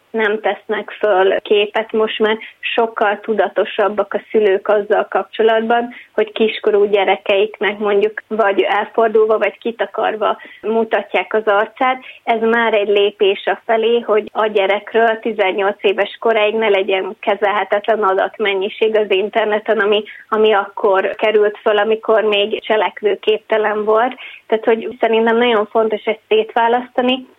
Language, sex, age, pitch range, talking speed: Hungarian, female, 20-39, 205-225 Hz, 125 wpm